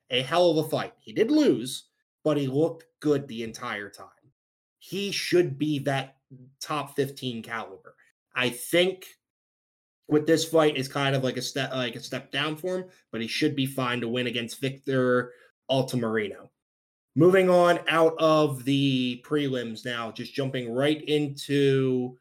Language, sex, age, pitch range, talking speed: English, male, 20-39, 125-155 Hz, 160 wpm